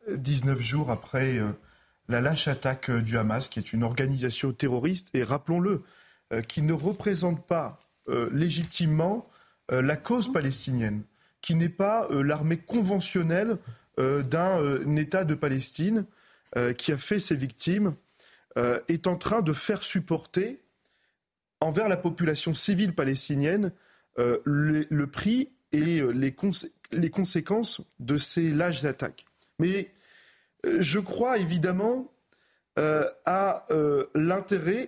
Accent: French